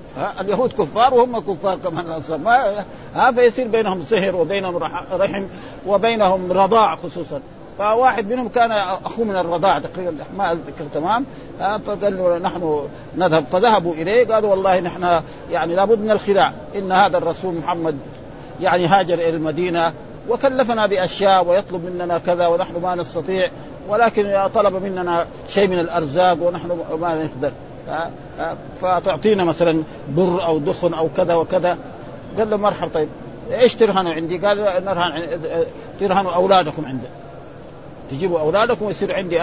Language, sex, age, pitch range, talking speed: Arabic, male, 50-69, 170-225 Hz, 130 wpm